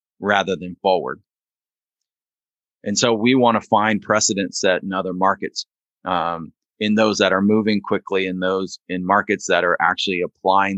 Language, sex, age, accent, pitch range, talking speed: English, male, 30-49, American, 95-110 Hz, 160 wpm